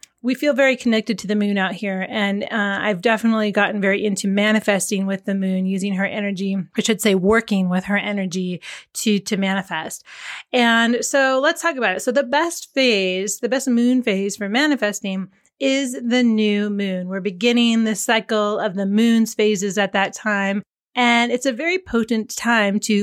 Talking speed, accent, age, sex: 185 wpm, American, 30-49, female